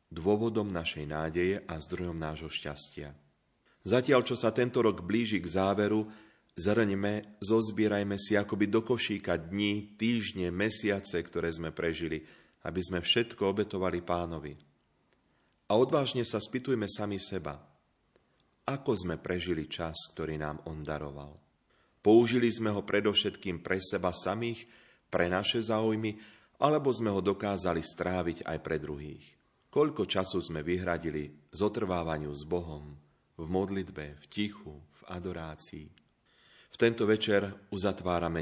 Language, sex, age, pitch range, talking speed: Slovak, male, 30-49, 80-105 Hz, 130 wpm